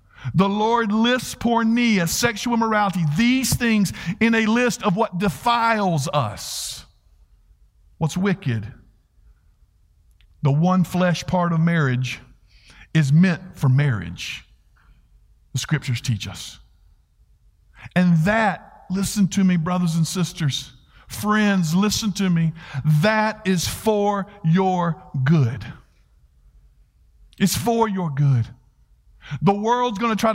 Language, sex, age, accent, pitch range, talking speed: English, male, 50-69, American, 165-235 Hz, 115 wpm